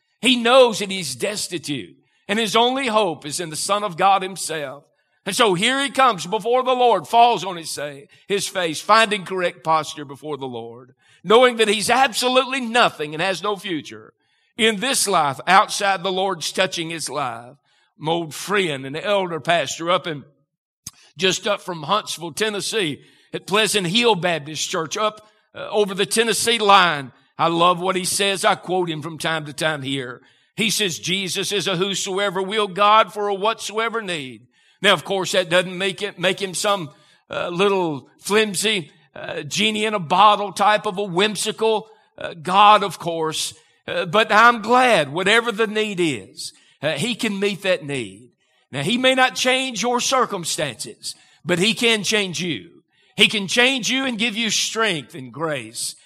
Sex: male